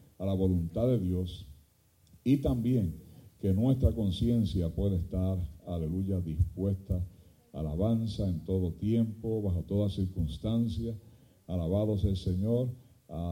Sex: male